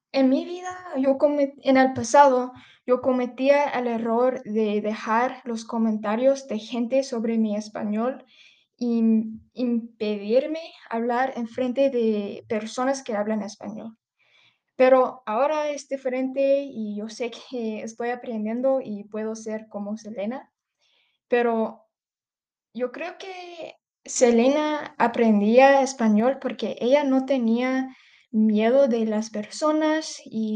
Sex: female